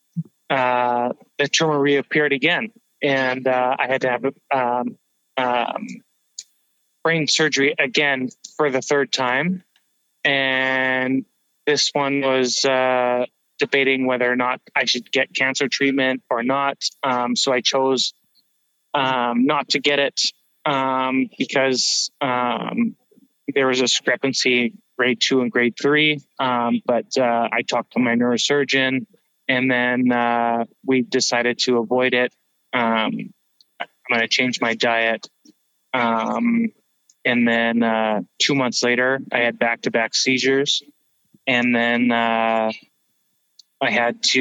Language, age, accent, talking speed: English, 20-39, American, 135 wpm